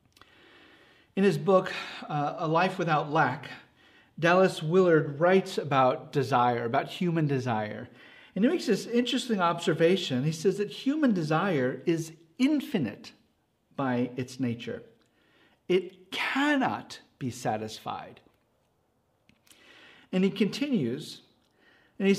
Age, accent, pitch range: 50-69, American, 150-210 Hz